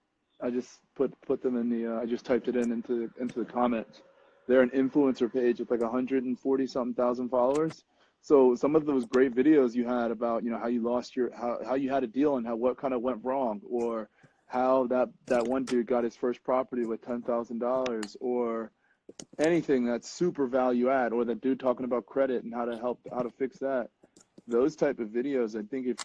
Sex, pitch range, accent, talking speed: male, 120-135 Hz, American, 230 wpm